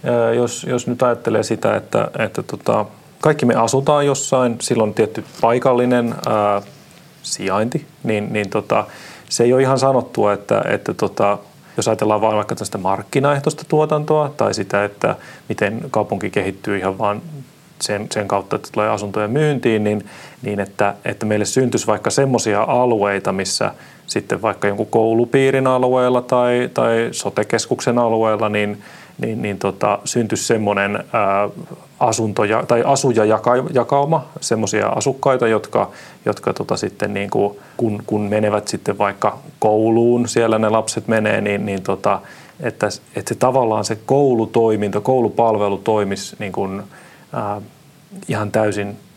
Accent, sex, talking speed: native, male, 135 wpm